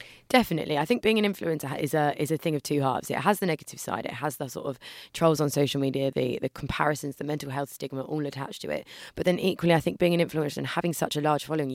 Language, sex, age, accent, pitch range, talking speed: English, female, 20-39, British, 140-170 Hz, 270 wpm